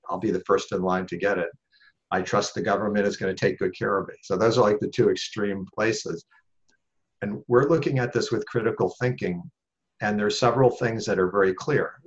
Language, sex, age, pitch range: English, male, 50-69, 90-105 Hz